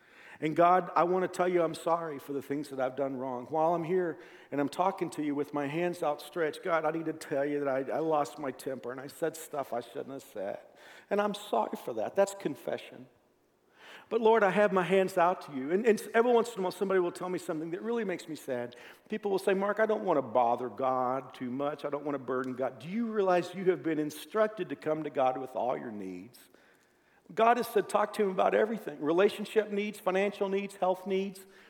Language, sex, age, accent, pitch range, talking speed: English, male, 50-69, American, 145-200 Hz, 240 wpm